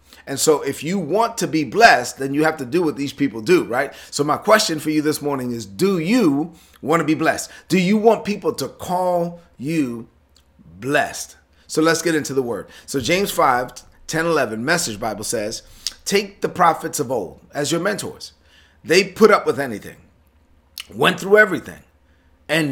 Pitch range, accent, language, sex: 110-175 Hz, American, English, male